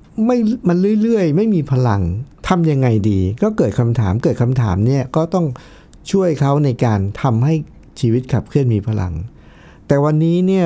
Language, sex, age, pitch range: Thai, male, 60-79, 110-160 Hz